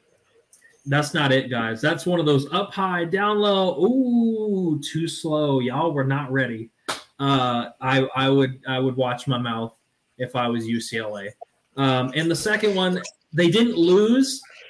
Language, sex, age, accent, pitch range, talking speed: English, male, 20-39, American, 135-170 Hz, 165 wpm